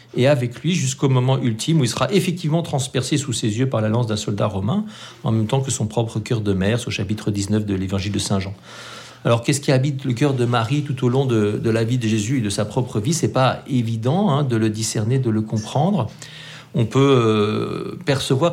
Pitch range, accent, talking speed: 110-135 Hz, French, 230 wpm